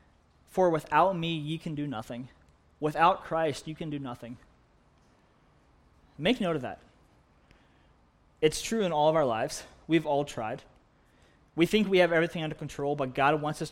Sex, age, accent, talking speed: male, 20-39, American, 165 wpm